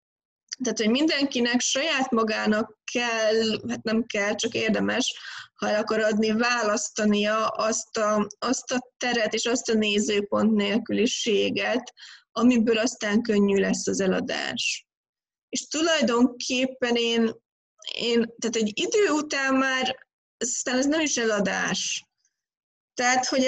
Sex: female